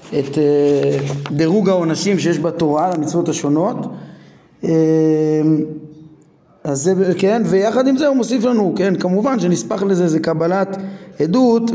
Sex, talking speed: male, 110 wpm